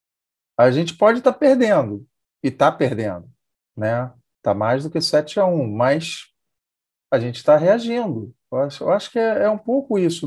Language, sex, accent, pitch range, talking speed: Portuguese, male, Brazilian, 120-170 Hz, 185 wpm